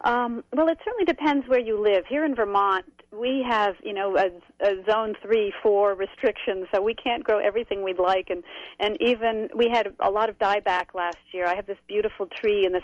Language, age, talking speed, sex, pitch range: English, 50-69, 215 wpm, female, 185-240 Hz